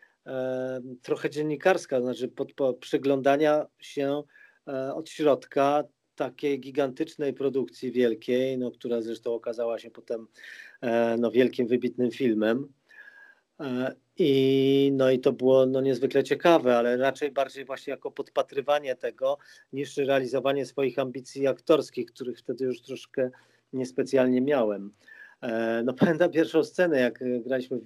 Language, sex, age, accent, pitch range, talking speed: Polish, male, 40-59, native, 125-145 Hz, 120 wpm